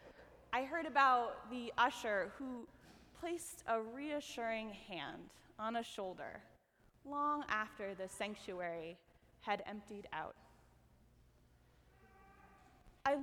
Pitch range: 205-270 Hz